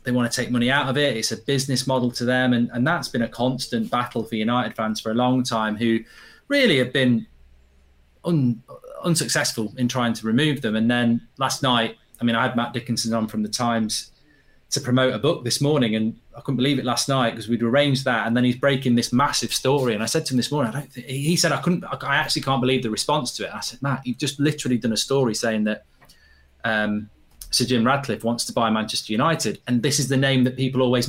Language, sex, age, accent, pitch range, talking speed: English, male, 20-39, British, 115-140 Hz, 245 wpm